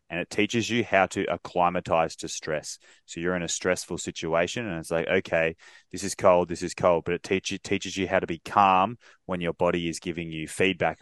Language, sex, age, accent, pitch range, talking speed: English, male, 20-39, Australian, 80-90 Hz, 230 wpm